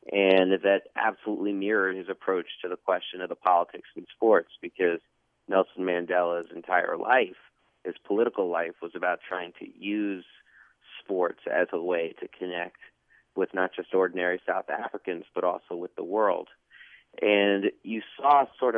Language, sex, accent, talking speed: English, male, American, 155 wpm